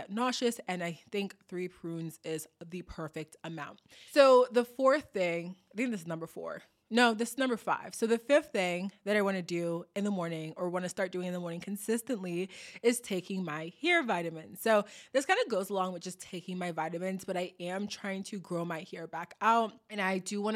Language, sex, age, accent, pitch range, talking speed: English, female, 20-39, American, 175-220 Hz, 220 wpm